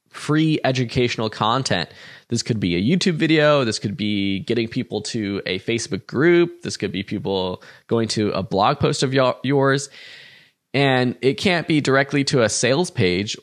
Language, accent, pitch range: English, American, 105-135 Hz